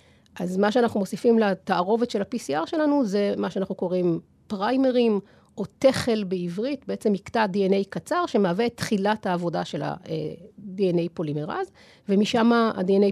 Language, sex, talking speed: Hebrew, female, 130 wpm